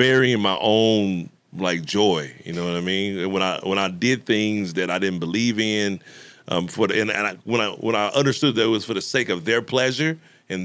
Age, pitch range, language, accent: 30-49, 95-120 Hz, English, American